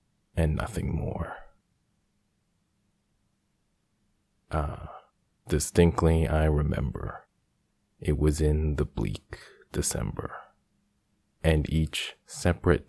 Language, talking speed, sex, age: English, 75 wpm, male, 30-49